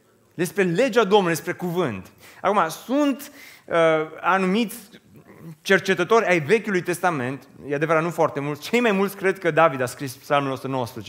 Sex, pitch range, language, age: male, 140-190 Hz, Romanian, 30-49